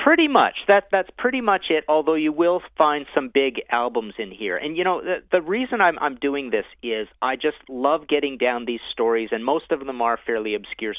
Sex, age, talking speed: male, 40-59, 225 wpm